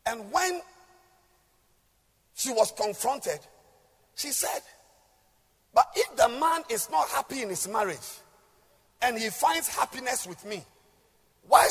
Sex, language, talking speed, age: male, English, 125 wpm, 50-69